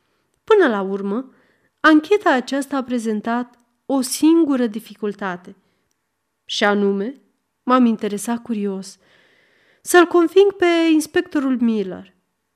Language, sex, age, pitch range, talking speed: Romanian, female, 30-49, 200-255 Hz, 95 wpm